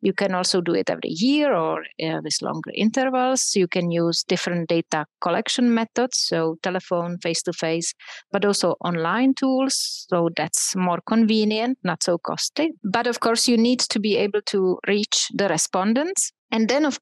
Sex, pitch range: female, 180-235 Hz